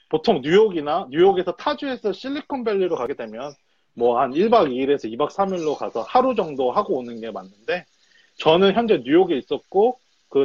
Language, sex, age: Korean, male, 30-49